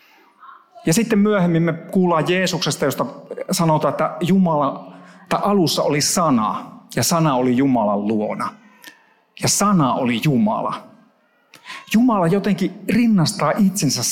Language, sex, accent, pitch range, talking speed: Finnish, male, native, 155-210 Hz, 110 wpm